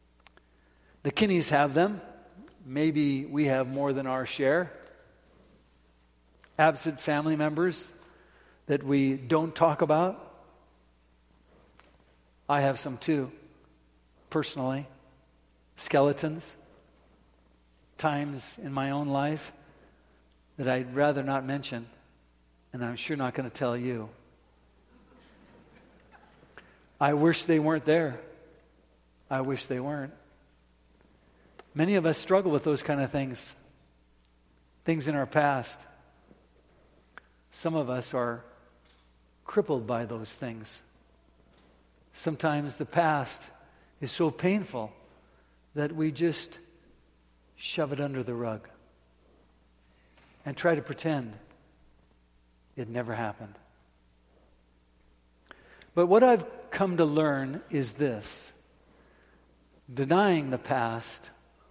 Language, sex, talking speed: English, male, 100 wpm